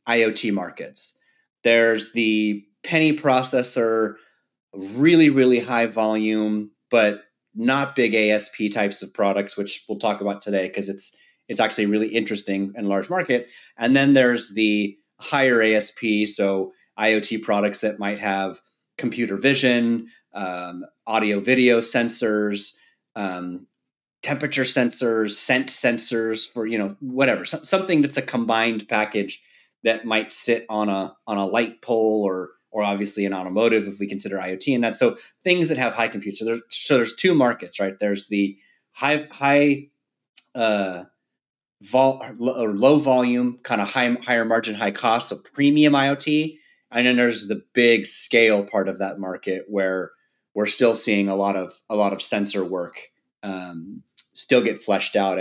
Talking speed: 155 wpm